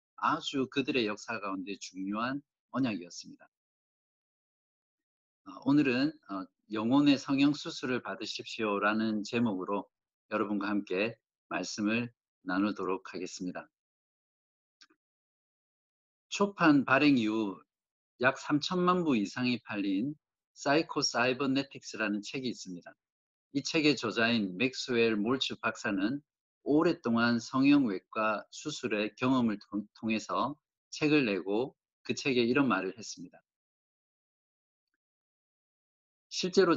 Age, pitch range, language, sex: 50-69, 105-150 Hz, Korean, male